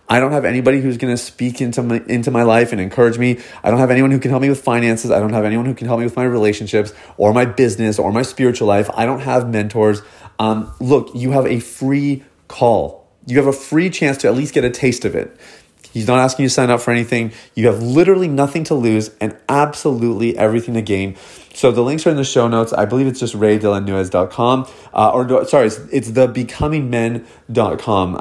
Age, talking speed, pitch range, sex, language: 30-49, 225 wpm, 110-130 Hz, male, English